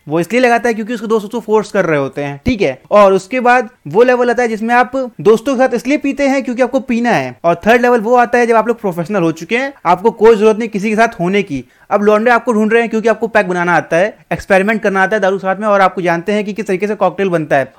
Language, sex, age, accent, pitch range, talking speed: Hindi, male, 30-49, native, 190-240 Hz, 290 wpm